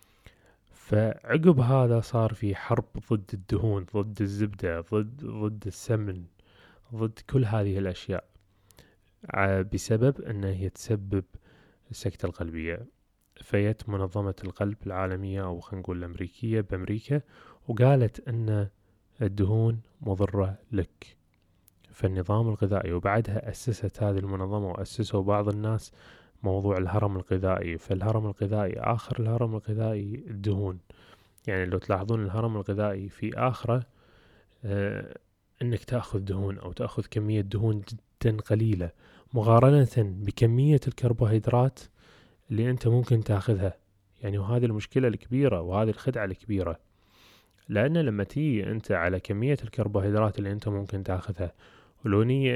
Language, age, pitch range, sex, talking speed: Arabic, 20-39, 95-115 Hz, male, 110 wpm